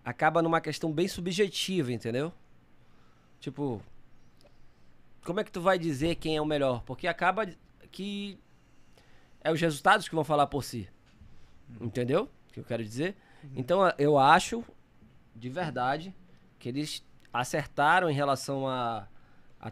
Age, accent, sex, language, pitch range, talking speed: 20-39, Brazilian, male, Portuguese, 125-165 Hz, 140 wpm